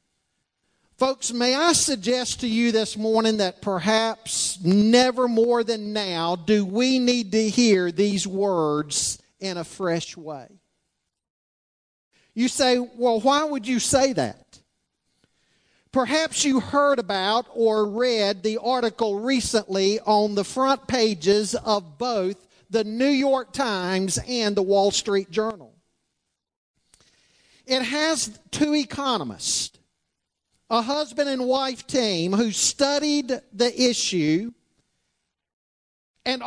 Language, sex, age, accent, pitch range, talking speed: English, male, 40-59, American, 210-260 Hz, 115 wpm